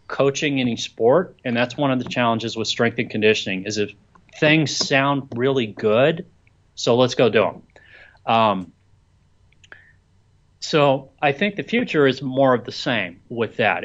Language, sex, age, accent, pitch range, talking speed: English, male, 30-49, American, 105-130 Hz, 160 wpm